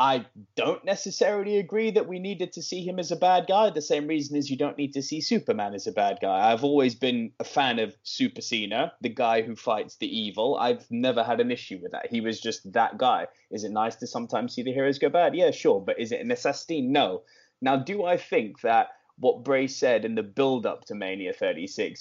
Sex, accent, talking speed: male, British, 235 wpm